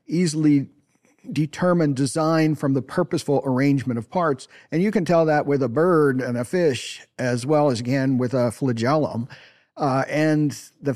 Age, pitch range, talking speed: 50-69, 125-150 Hz, 165 wpm